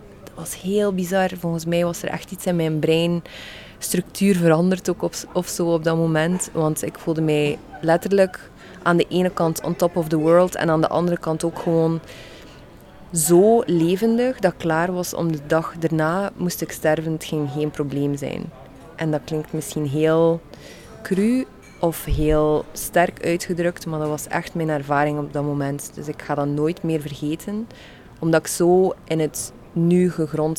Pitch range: 150-170 Hz